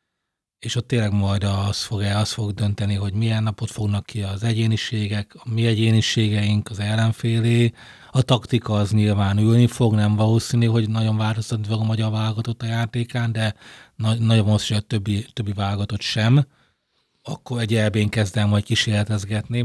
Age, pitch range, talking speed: 30-49, 105-120 Hz, 160 wpm